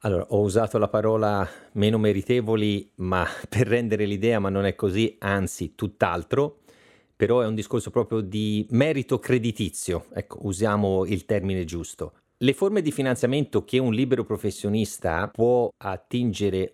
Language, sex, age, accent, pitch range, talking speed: Italian, male, 30-49, native, 100-125 Hz, 145 wpm